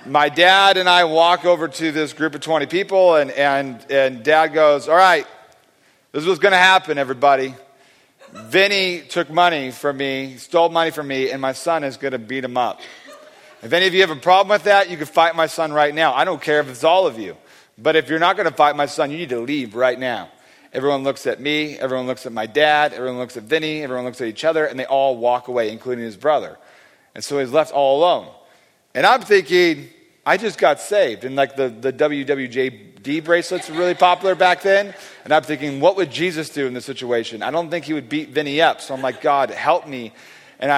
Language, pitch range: English, 130-165 Hz